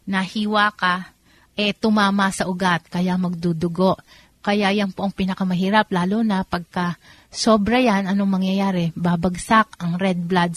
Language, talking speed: Filipino, 135 wpm